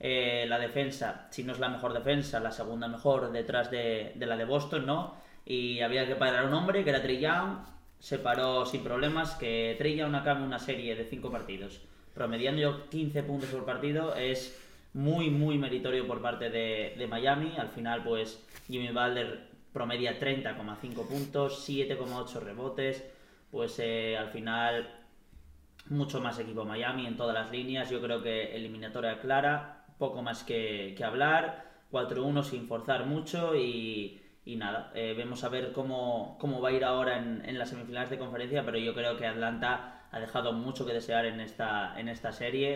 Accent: Spanish